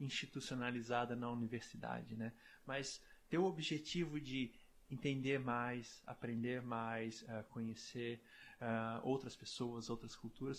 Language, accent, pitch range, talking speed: Portuguese, Brazilian, 120-160 Hz, 100 wpm